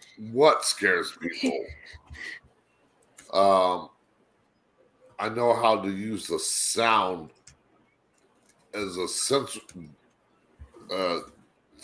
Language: English